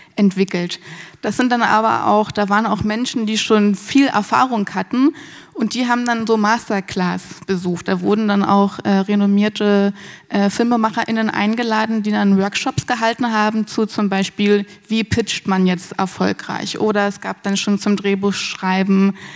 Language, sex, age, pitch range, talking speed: German, female, 20-39, 190-220 Hz, 160 wpm